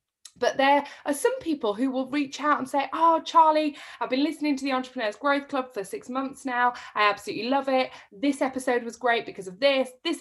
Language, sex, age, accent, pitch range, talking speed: English, female, 20-39, British, 210-290 Hz, 215 wpm